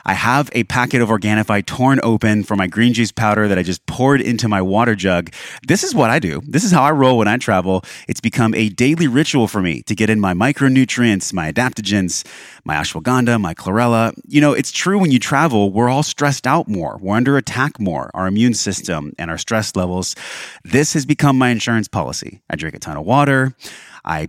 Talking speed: 215 wpm